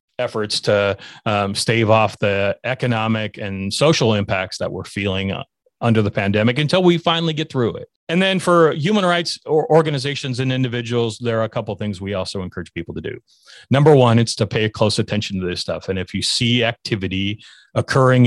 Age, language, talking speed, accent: 30-49, English, 190 wpm, American